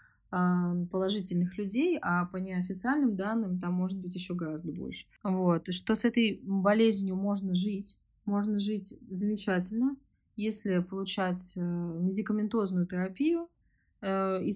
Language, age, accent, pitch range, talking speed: Russian, 20-39, native, 180-220 Hz, 115 wpm